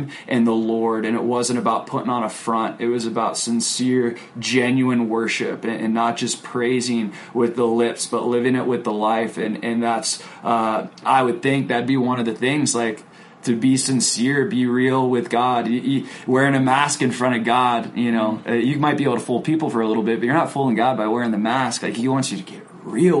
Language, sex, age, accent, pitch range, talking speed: English, male, 20-39, American, 110-125 Hz, 230 wpm